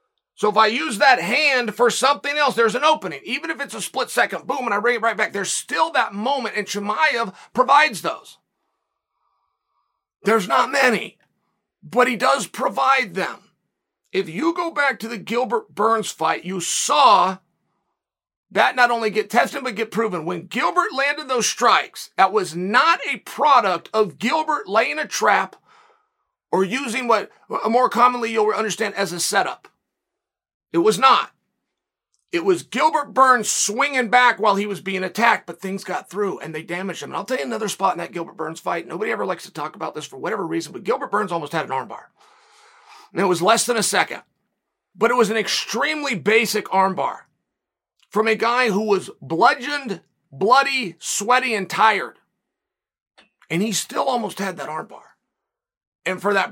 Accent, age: American, 40-59